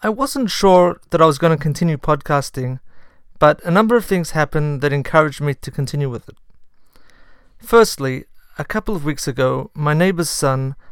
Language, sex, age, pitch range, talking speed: English, male, 40-59, 135-160 Hz, 175 wpm